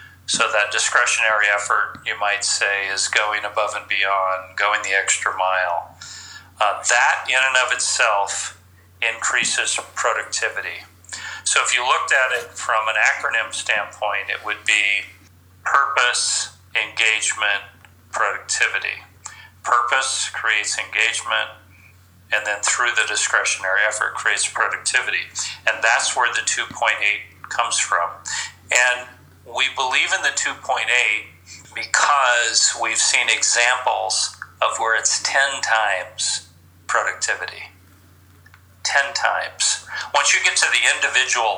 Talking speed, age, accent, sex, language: 120 wpm, 40-59, American, male, English